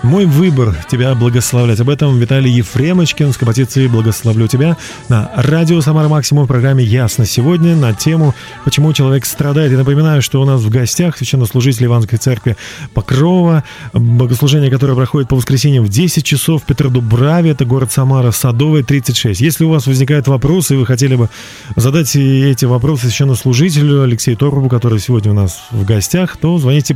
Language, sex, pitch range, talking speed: Russian, male, 120-150 Hz, 165 wpm